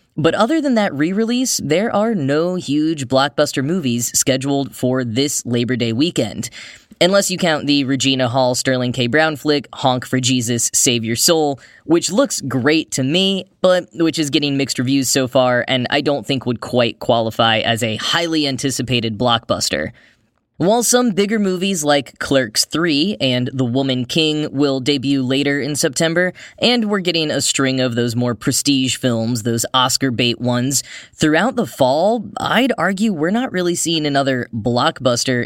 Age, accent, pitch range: 10-29, American, 130-160 Hz